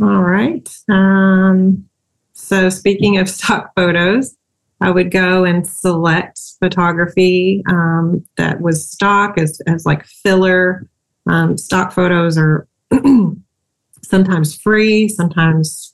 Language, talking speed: English, 110 wpm